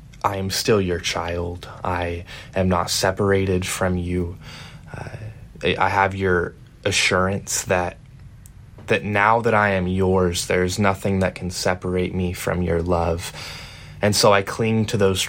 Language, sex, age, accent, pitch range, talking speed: English, male, 20-39, American, 90-105 Hz, 155 wpm